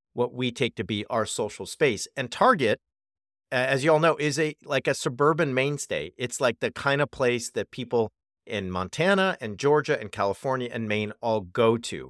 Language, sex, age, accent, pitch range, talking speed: English, male, 40-59, American, 105-140 Hz, 195 wpm